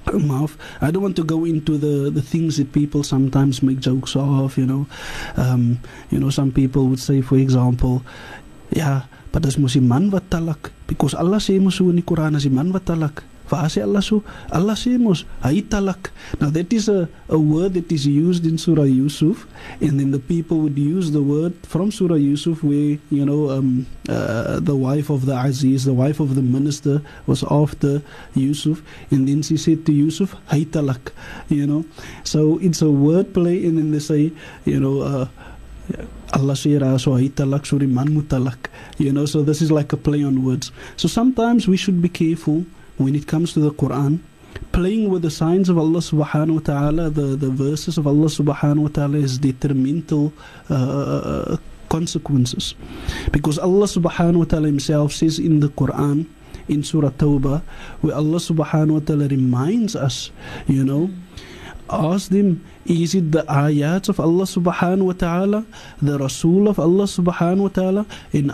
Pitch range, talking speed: 140-170 Hz, 160 wpm